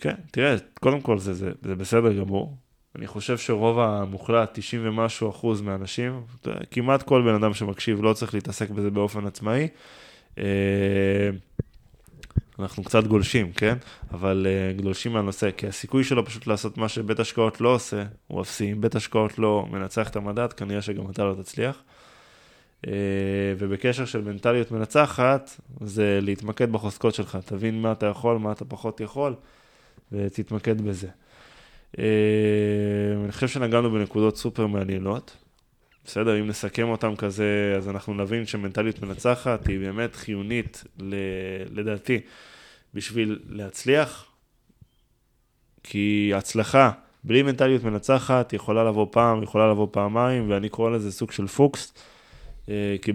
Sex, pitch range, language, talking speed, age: male, 100-120 Hz, Hebrew, 130 wpm, 20-39